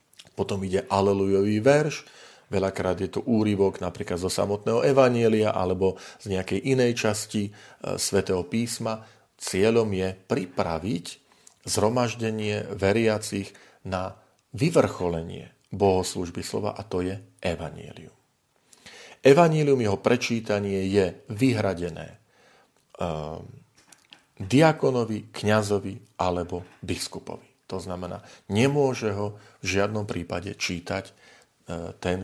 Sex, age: male, 40-59